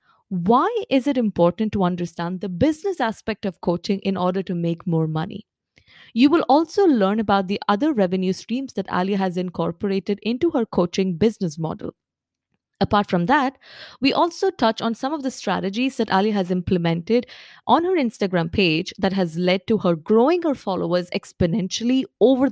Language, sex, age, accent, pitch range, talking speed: English, female, 20-39, Indian, 180-235 Hz, 170 wpm